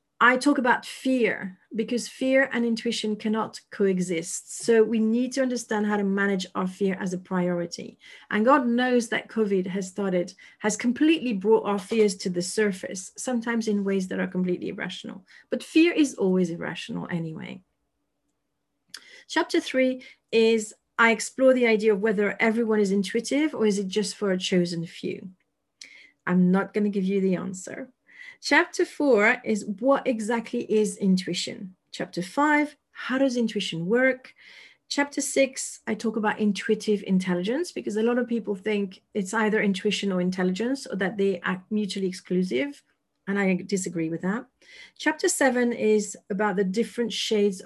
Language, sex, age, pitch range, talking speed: English, female, 40-59, 190-245 Hz, 160 wpm